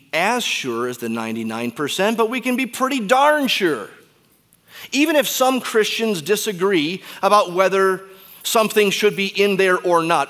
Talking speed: 150 wpm